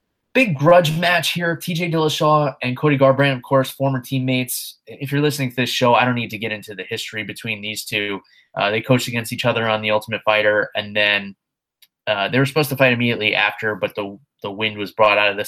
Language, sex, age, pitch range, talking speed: English, male, 20-39, 105-130 Hz, 230 wpm